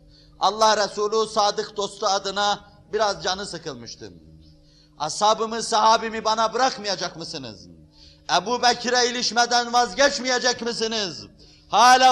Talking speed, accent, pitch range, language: 90 wpm, native, 200-250 Hz, Turkish